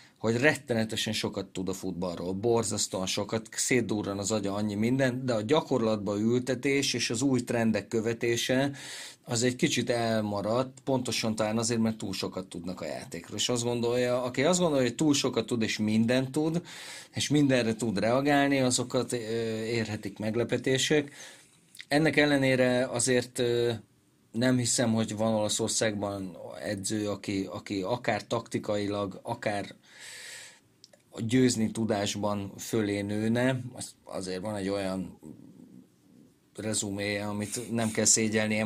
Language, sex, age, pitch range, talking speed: Hungarian, male, 30-49, 105-125 Hz, 130 wpm